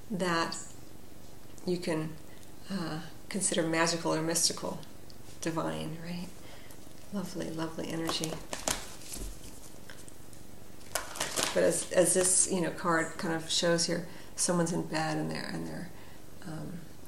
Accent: American